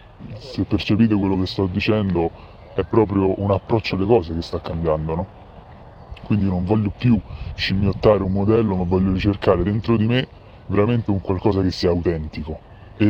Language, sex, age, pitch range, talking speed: Italian, female, 20-39, 85-105 Hz, 165 wpm